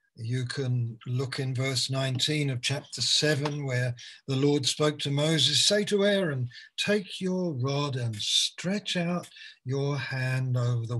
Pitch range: 120-150 Hz